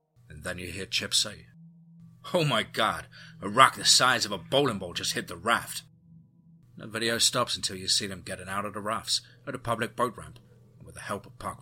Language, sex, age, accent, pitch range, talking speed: English, male, 30-49, British, 105-135 Hz, 220 wpm